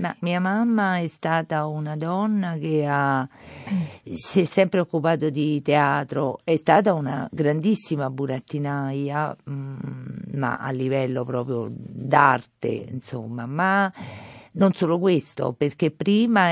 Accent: native